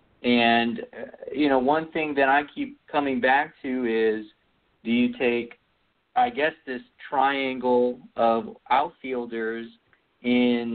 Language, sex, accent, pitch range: English, male, American, 120-165 Hz